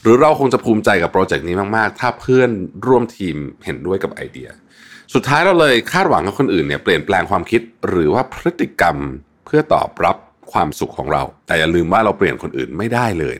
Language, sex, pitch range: Thai, male, 95-135 Hz